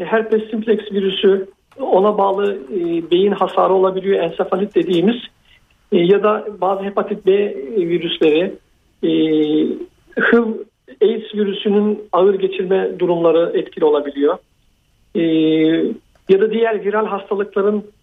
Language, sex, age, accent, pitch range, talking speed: Turkish, male, 50-69, native, 190-225 Hz, 110 wpm